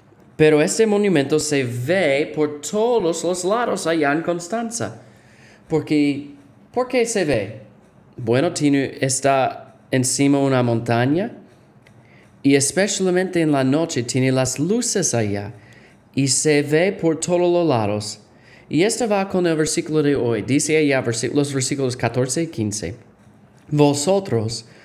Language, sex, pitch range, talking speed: Spanish, male, 115-155 Hz, 135 wpm